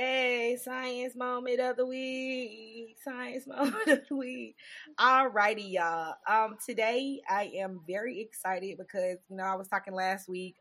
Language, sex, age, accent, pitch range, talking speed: English, female, 20-39, American, 170-225 Hz, 160 wpm